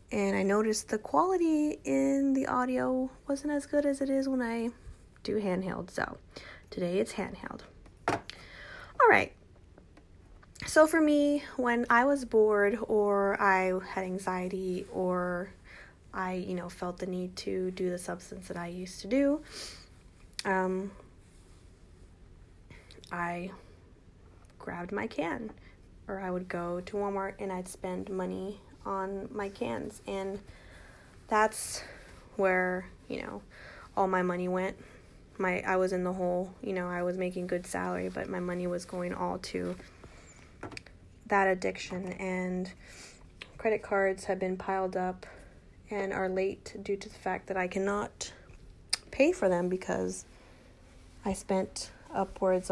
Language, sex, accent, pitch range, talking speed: English, female, American, 175-205 Hz, 140 wpm